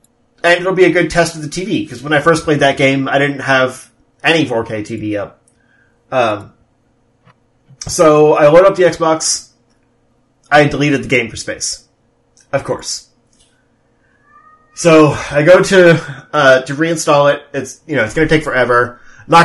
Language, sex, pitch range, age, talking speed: English, male, 125-155 Hz, 30-49, 175 wpm